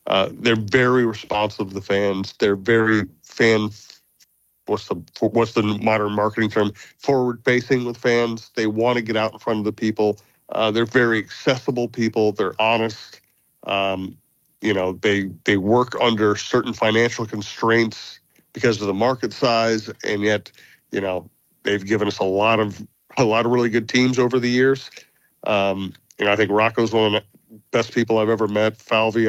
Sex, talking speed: male, 180 wpm